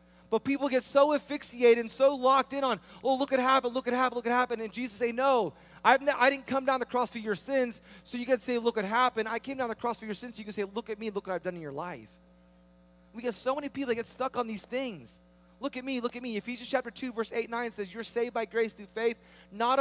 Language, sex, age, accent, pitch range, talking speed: English, male, 20-39, American, 175-255 Hz, 285 wpm